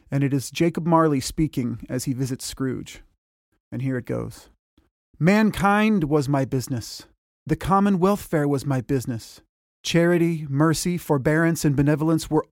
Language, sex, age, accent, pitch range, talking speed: English, male, 30-49, American, 135-170 Hz, 145 wpm